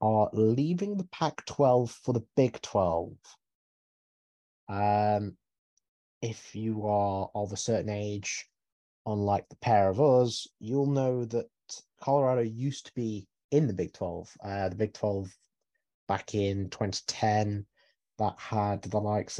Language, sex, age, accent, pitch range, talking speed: English, male, 30-49, British, 100-120 Hz, 135 wpm